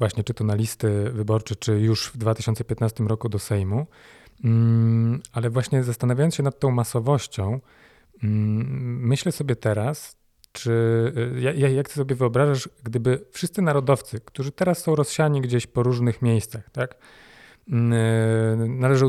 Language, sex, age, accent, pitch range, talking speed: Polish, male, 30-49, native, 110-125 Hz, 130 wpm